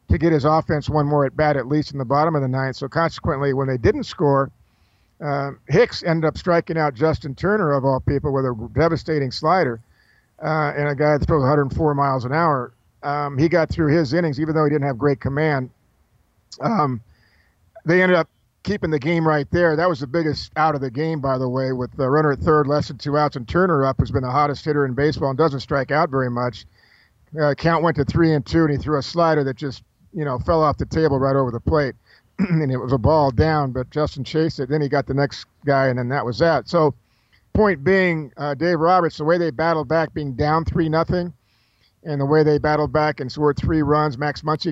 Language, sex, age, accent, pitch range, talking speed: English, male, 50-69, American, 135-160 Hz, 240 wpm